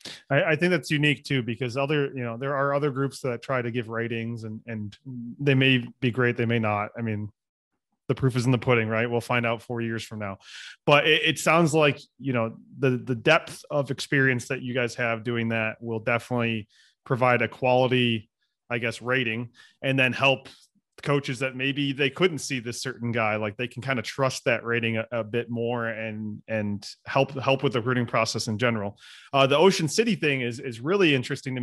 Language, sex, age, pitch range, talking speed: English, male, 20-39, 115-140 Hz, 215 wpm